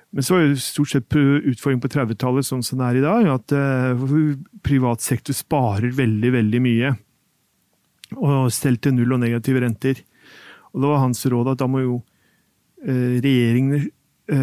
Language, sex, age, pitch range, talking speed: English, male, 40-59, 125-150 Hz, 150 wpm